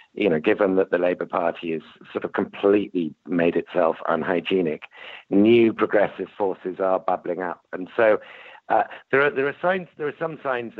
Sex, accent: male, British